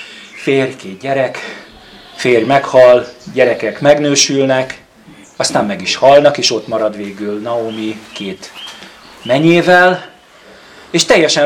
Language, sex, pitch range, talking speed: Hungarian, male, 115-150 Hz, 105 wpm